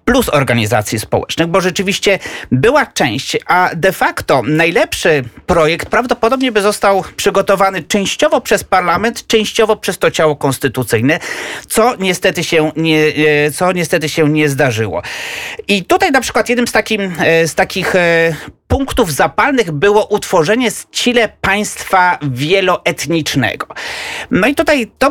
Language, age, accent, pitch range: Polish, 30-49, native, 150-210 Hz